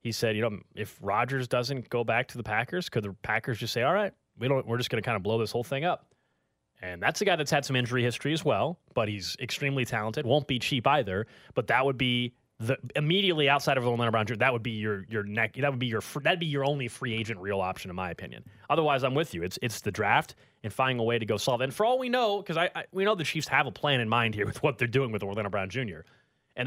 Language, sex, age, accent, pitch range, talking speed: English, male, 30-49, American, 115-150 Hz, 280 wpm